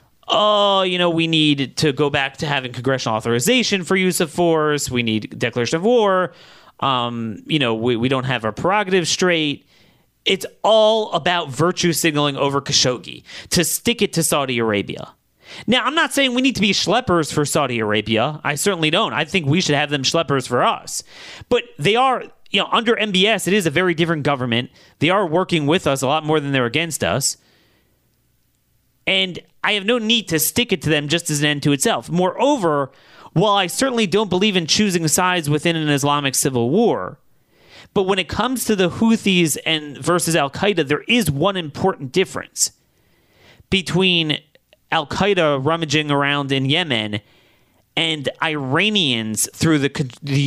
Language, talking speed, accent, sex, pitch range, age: English, 175 wpm, American, male, 140-190 Hz, 30-49